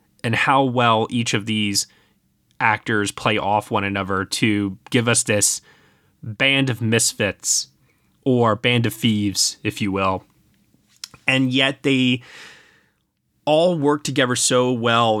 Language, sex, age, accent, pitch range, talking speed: English, male, 20-39, American, 110-135 Hz, 130 wpm